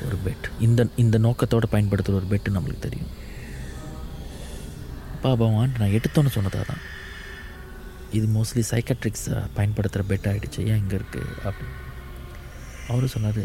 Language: Tamil